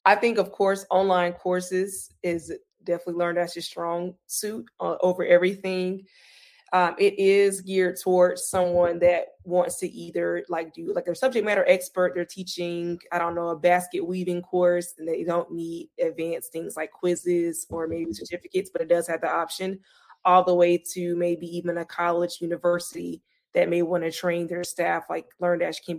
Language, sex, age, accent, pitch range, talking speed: English, female, 20-39, American, 170-185 Hz, 175 wpm